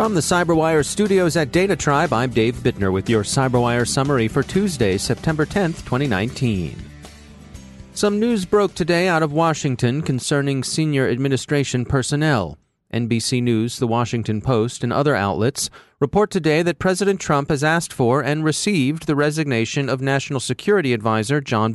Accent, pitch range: American, 120-160 Hz